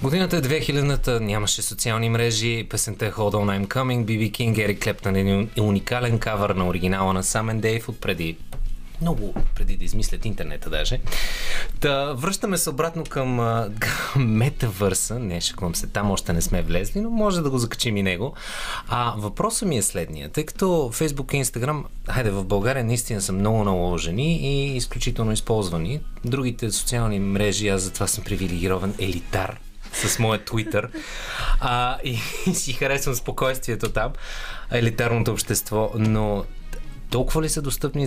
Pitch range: 95-125 Hz